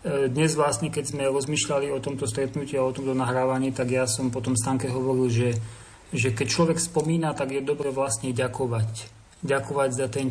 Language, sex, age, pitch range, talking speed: Slovak, male, 30-49, 130-150 Hz, 180 wpm